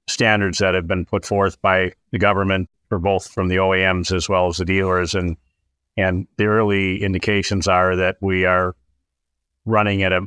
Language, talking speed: English, 180 wpm